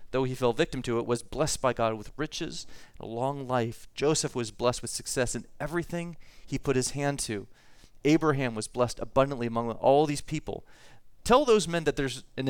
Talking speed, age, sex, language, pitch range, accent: 200 wpm, 30-49, male, English, 130-170 Hz, American